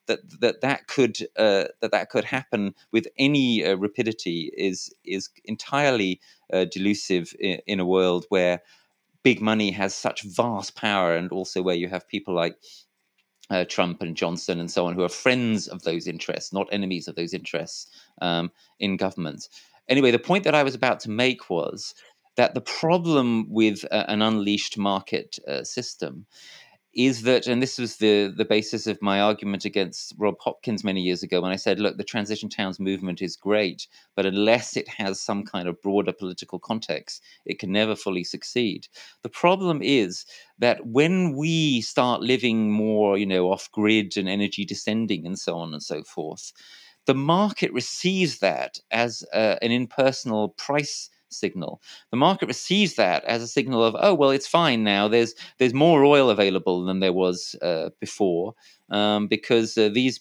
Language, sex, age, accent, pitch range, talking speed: English, male, 30-49, British, 95-125 Hz, 175 wpm